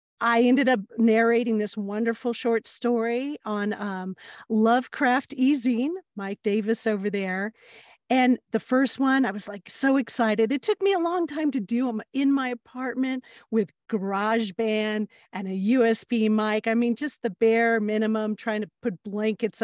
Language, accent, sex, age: English, American, female, 40-59